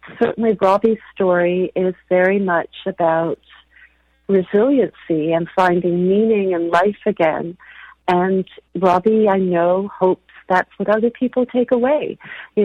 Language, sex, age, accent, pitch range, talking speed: English, female, 50-69, American, 170-210 Hz, 135 wpm